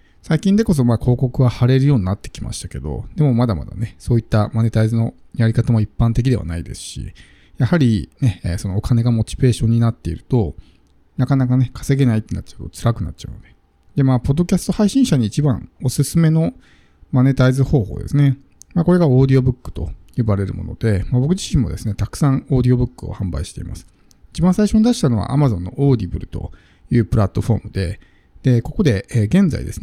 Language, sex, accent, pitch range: Japanese, male, native, 100-140 Hz